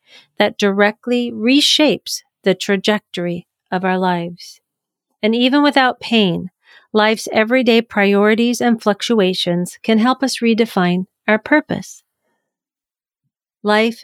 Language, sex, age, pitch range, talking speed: English, female, 40-59, 185-245 Hz, 105 wpm